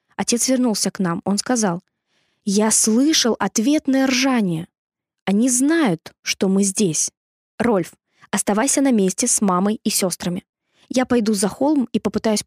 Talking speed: 140 wpm